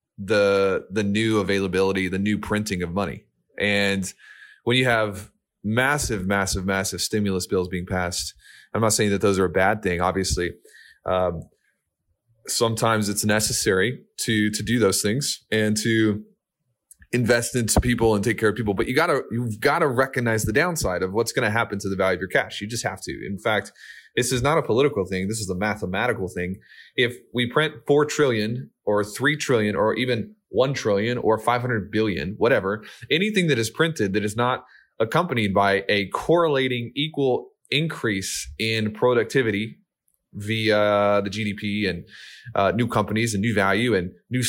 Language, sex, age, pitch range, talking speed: English, male, 20-39, 100-120 Hz, 175 wpm